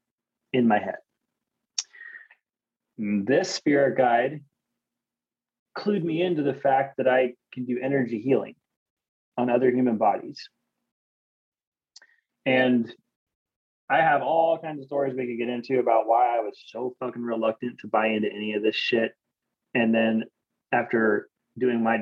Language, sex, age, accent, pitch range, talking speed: English, male, 30-49, American, 115-165 Hz, 140 wpm